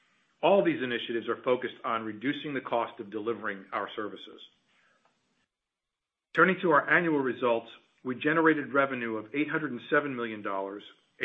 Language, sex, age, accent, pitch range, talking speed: English, male, 40-59, American, 110-145 Hz, 135 wpm